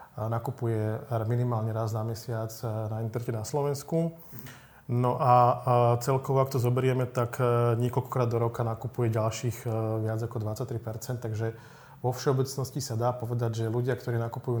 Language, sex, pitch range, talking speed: Slovak, male, 115-130 Hz, 140 wpm